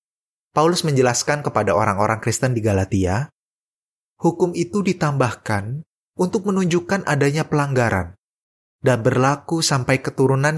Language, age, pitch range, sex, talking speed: Indonesian, 20-39, 110-150 Hz, male, 100 wpm